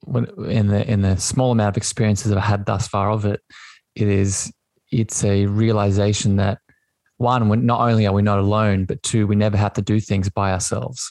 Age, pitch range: 20-39, 100-115 Hz